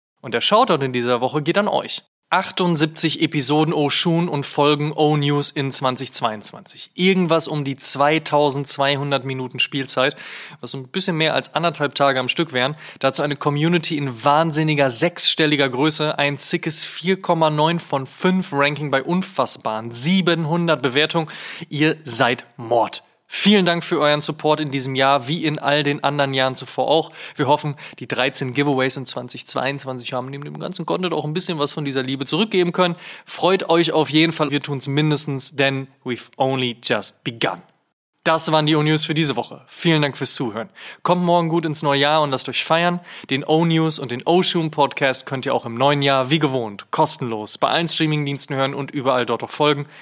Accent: German